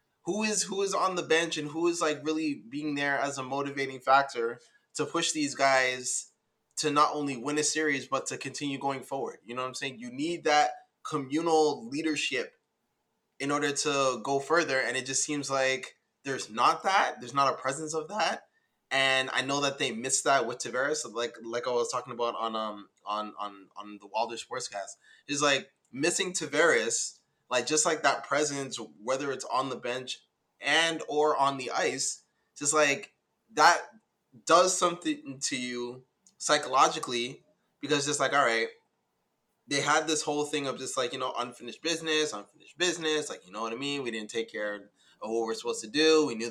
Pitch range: 125-155 Hz